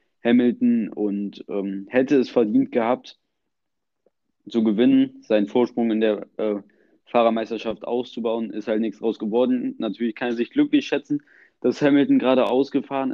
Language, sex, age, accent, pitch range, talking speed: German, male, 20-39, German, 110-130 Hz, 140 wpm